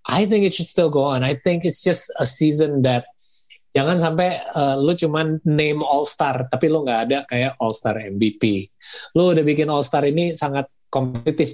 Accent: native